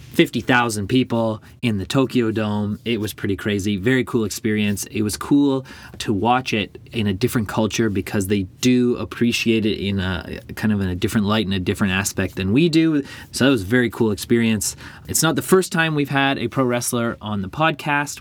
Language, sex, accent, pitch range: English, male, American, 100-125 Hz